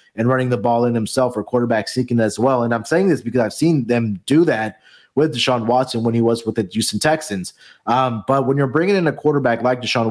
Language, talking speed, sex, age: English, 245 wpm, male, 20-39